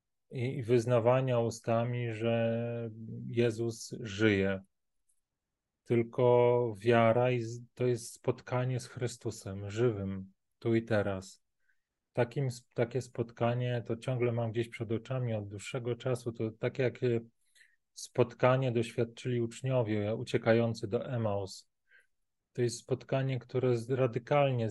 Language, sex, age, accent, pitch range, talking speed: Polish, male, 30-49, native, 110-125 Hz, 105 wpm